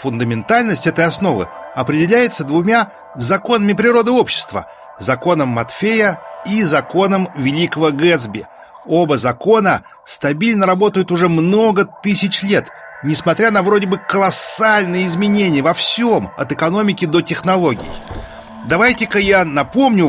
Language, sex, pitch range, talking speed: Russian, male, 140-205 Hz, 110 wpm